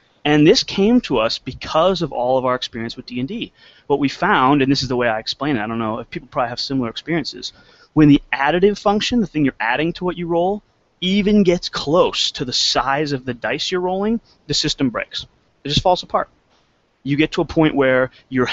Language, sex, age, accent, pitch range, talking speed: English, male, 30-49, American, 125-165 Hz, 225 wpm